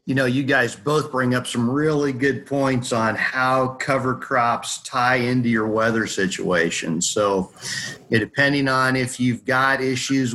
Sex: male